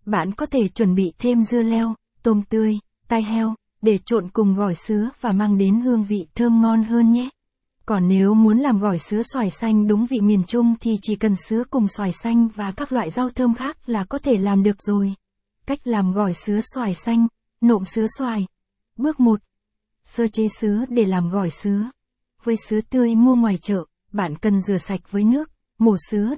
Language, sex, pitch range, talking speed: Vietnamese, female, 205-235 Hz, 200 wpm